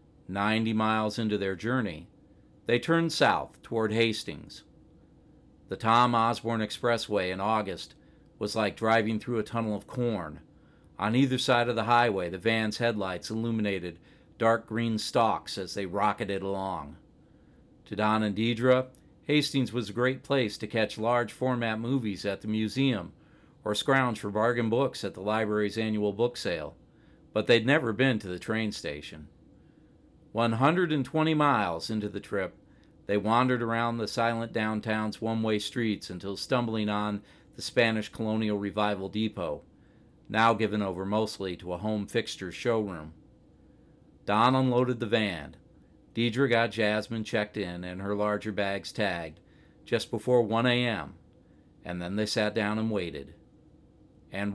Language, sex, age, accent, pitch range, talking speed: English, male, 40-59, American, 105-120 Hz, 145 wpm